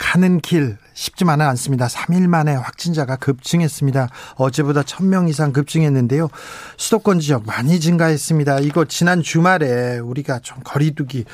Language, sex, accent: Korean, male, native